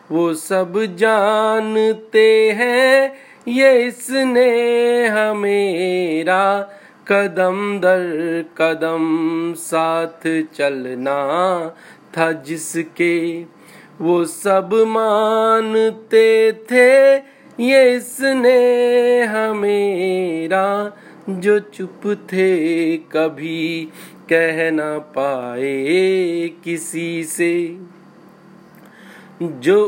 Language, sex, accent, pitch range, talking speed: Hindi, male, native, 165-220 Hz, 60 wpm